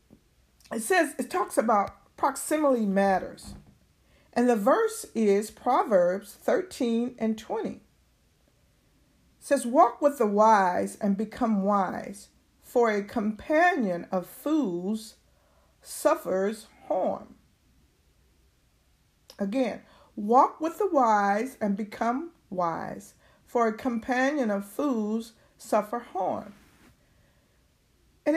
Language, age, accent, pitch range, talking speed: English, 50-69, American, 210-285 Hz, 100 wpm